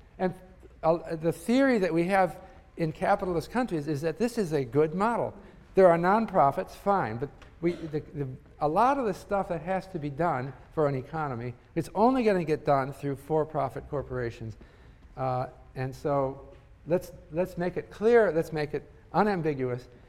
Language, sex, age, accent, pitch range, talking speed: English, male, 50-69, American, 140-185 Hz, 165 wpm